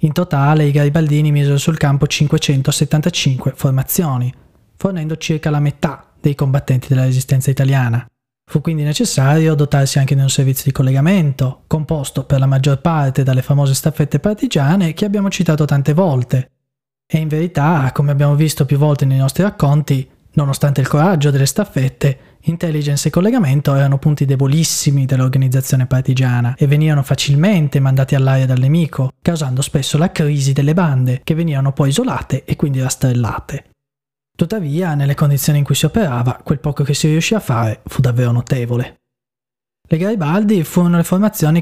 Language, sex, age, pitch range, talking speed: Italian, male, 20-39, 135-155 Hz, 155 wpm